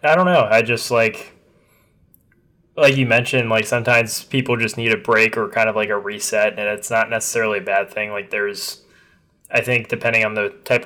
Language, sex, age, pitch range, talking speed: English, male, 20-39, 105-120 Hz, 205 wpm